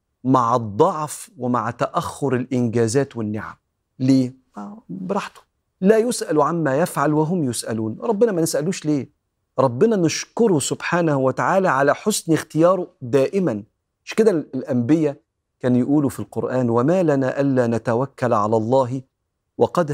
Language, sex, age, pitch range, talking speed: Arabic, male, 40-59, 120-165 Hz, 120 wpm